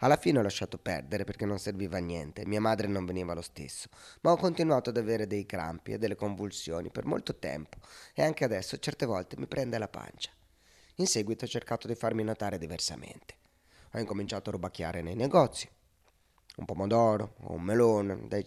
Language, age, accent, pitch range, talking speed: Italian, 30-49, native, 85-120 Hz, 190 wpm